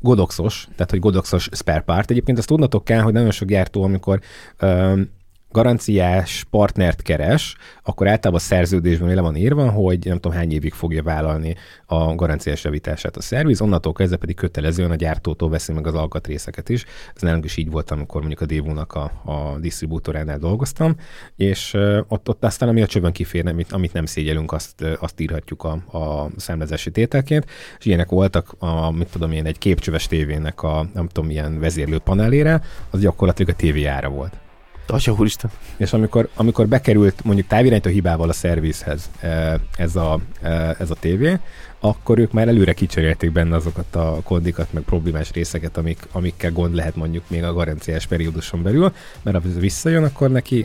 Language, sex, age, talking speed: Hungarian, male, 30-49, 160 wpm